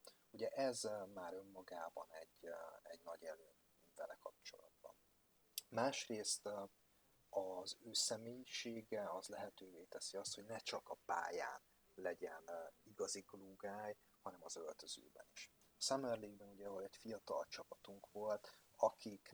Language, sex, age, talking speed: Hungarian, male, 30-49, 115 wpm